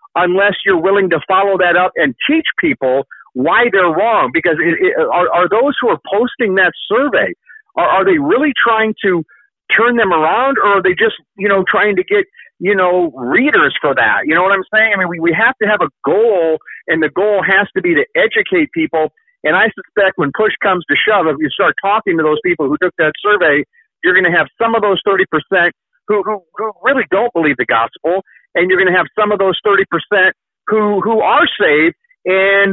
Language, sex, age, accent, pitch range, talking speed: English, male, 50-69, American, 170-220 Hz, 215 wpm